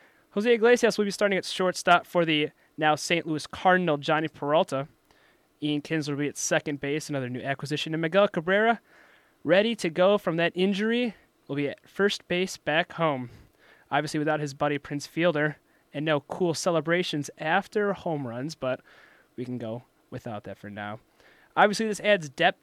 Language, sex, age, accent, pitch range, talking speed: English, male, 30-49, American, 140-180 Hz, 175 wpm